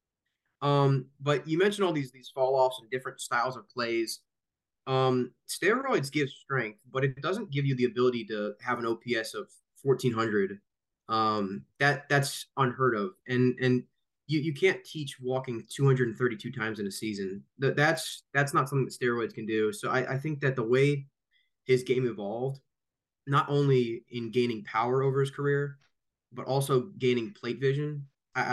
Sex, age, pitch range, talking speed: male, 20-39, 115-140 Hz, 170 wpm